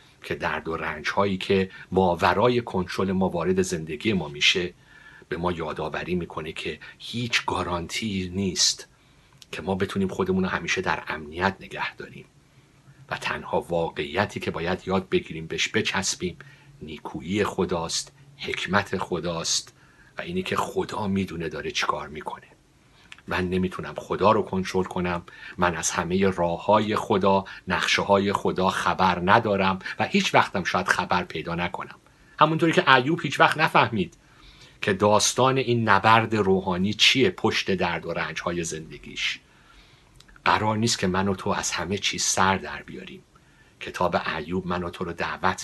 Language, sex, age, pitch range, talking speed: Persian, male, 50-69, 95-130 Hz, 145 wpm